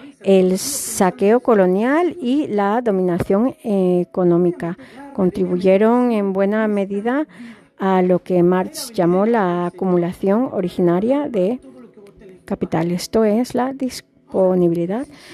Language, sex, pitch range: Spanish, female, 185-245 Hz